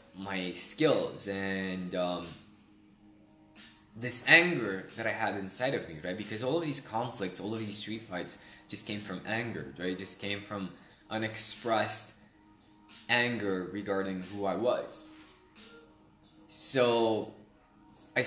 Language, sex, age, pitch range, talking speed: English, male, 20-39, 95-110 Hz, 130 wpm